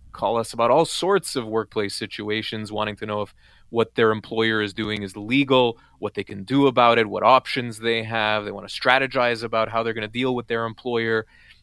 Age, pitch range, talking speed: 20-39, 105-125 Hz, 215 wpm